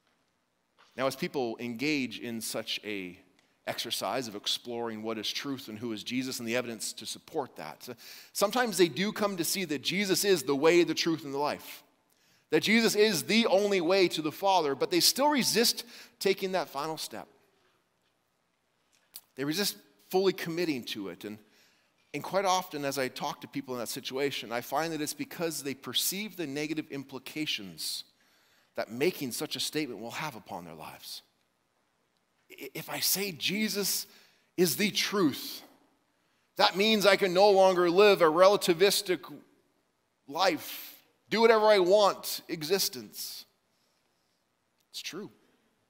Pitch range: 115-195 Hz